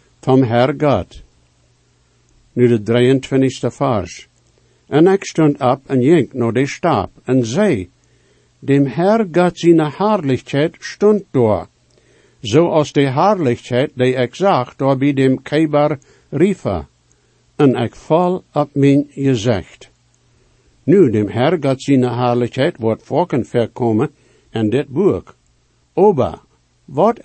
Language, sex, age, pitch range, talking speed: English, male, 60-79, 120-155 Hz, 115 wpm